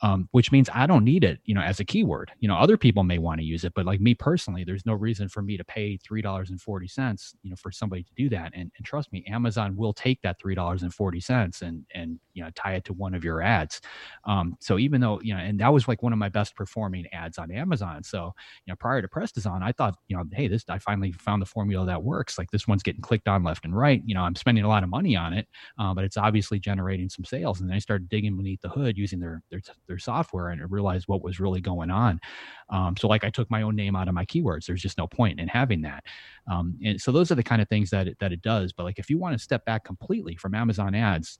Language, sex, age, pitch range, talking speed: English, male, 30-49, 90-110 Hz, 280 wpm